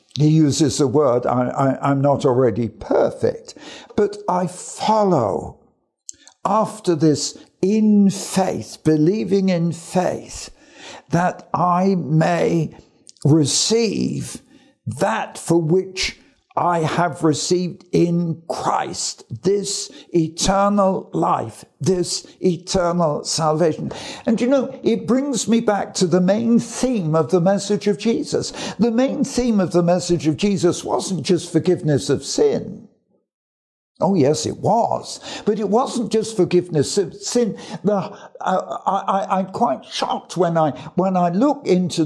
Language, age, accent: English, 60-79, British